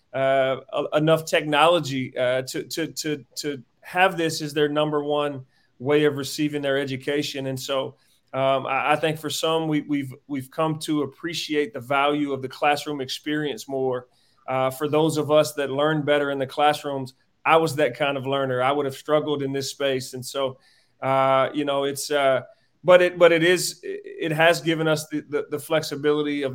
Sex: male